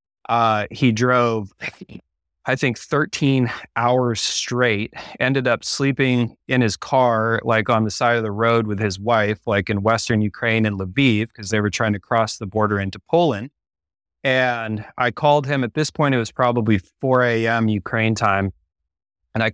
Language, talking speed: English, 170 wpm